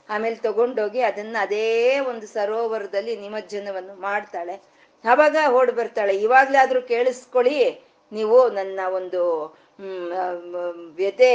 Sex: female